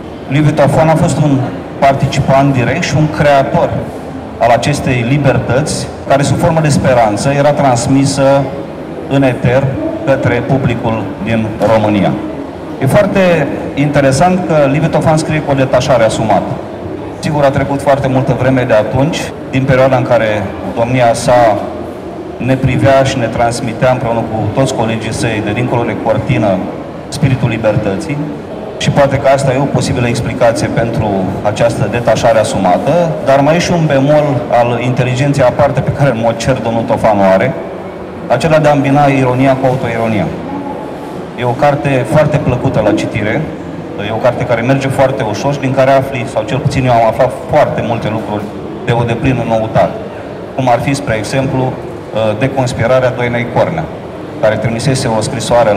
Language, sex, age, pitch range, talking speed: English, male, 30-49, 115-140 Hz, 155 wpm